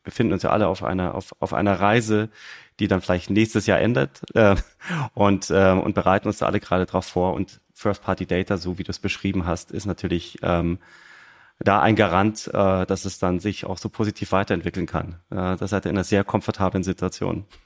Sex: male